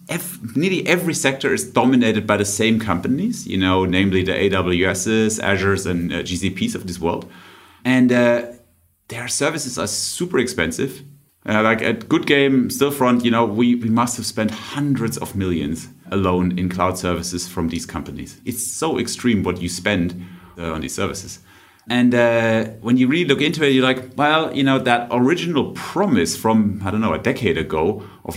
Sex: male